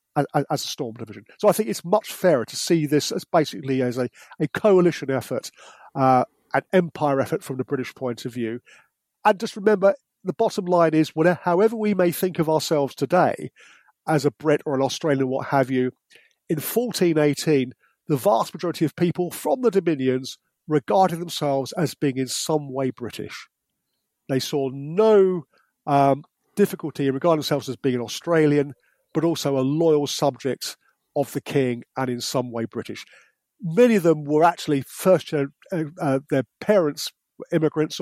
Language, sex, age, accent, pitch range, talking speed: English, male, 40-59, British, 135-170 Hz, 170 wpm